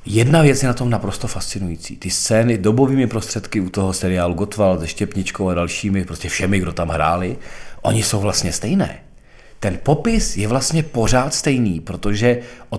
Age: 40-59